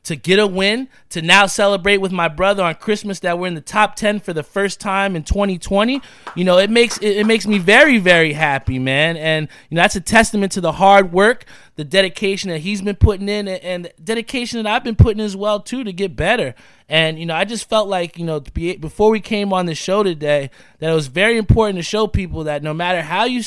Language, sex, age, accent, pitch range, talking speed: English, male, 20-39, American, 165-215 Hz, 250 wpm